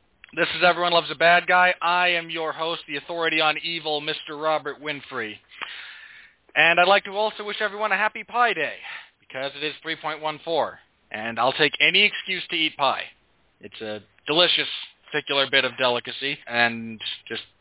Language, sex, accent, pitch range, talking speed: English, male, American, 145-180 Hz, 170 wpm